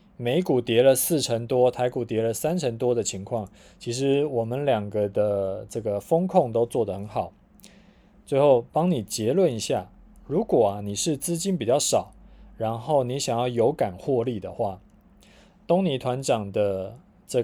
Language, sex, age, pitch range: Chinese, male, 20-39, 110-165 Hz